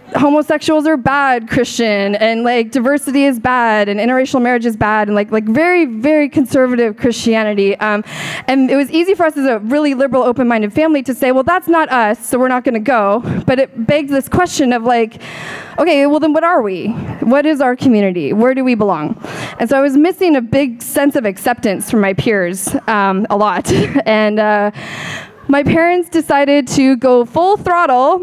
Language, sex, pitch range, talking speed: English, female, 210-280 Hz, 195 wpm